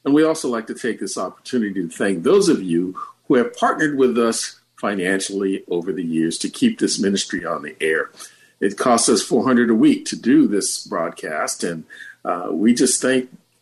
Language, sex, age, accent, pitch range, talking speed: English, male, 50-69, American, 100-150 Hz, 195 wpm